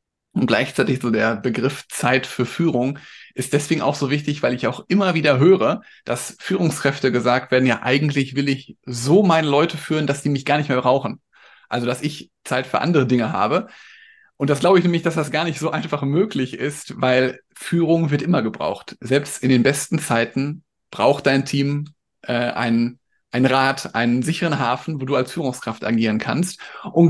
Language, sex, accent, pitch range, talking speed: German, male, German, 125-155 Hz, 195 wpm